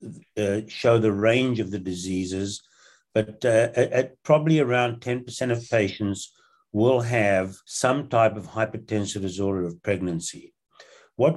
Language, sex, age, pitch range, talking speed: English, male, 60-79, 100-120 Hz, 130 wpm